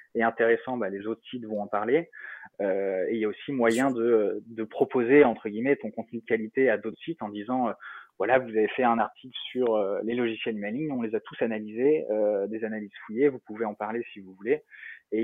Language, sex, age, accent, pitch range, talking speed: French, male, 20-39, French, 105-125 Hz, 230 wpm